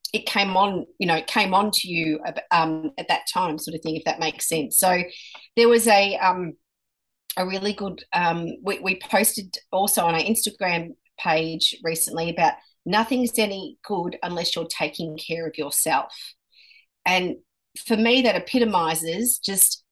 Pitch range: 170-220 Hz